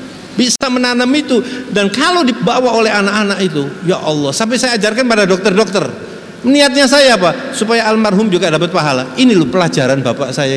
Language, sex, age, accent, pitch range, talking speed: English, male, 60-79, Indonesian, 170-230 Hz, 165 wpm